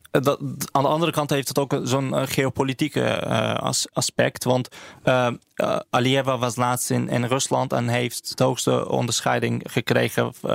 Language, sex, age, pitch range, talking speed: Dutch, male, 20-39, 120-135 Hz, 140 wpm